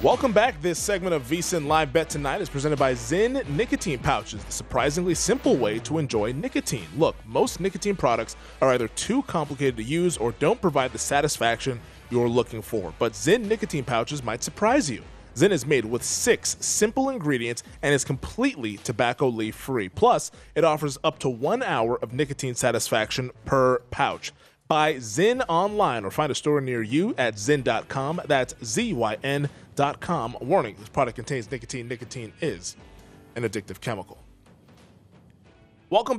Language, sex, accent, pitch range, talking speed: English, male, American, 125-165 Hz, 160 wpm